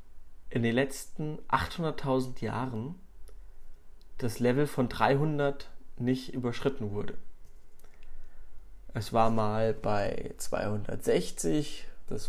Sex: male